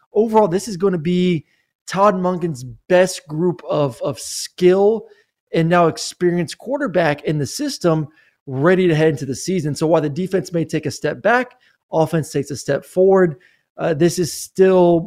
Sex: male